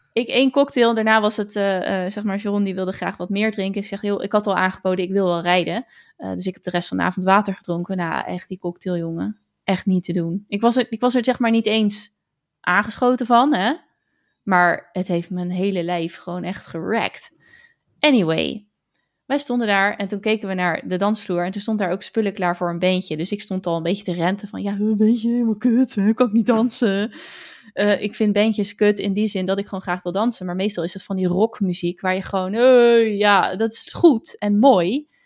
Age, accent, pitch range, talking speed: 20-39, Dutch, 185-225 Hz, 240 wpm